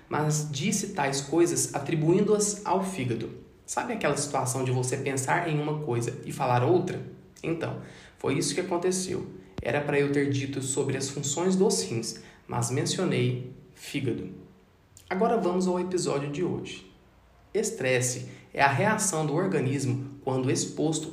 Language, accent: Portuguese, Brazilian